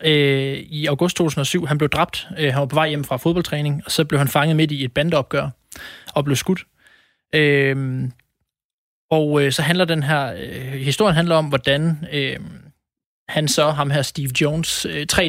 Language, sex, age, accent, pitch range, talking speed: Danish, male, 20-39, native, 140-160 Hz, 160 wpm